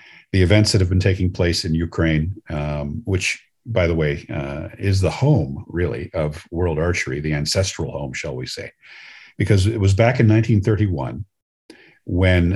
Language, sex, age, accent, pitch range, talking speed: English, male, 50-69, American, 80-105 Hz, 165 wpm